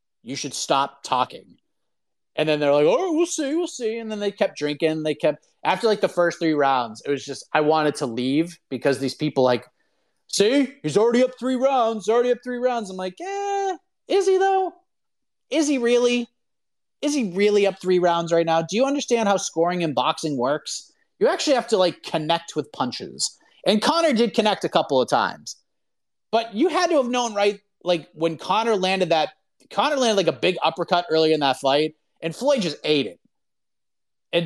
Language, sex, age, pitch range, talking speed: English, male, 30-49, 155-235 Hz, 205 wpm